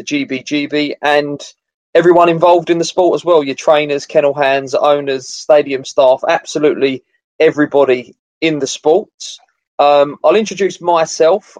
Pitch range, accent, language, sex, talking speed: 130-160 Hz, British, English, male, 135 wpm